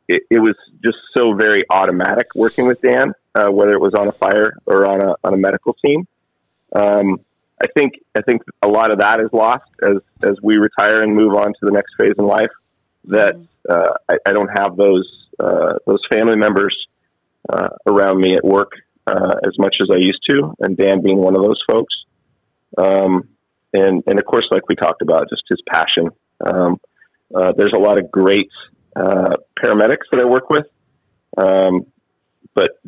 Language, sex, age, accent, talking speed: English, male, 30-49, American, 190 wpm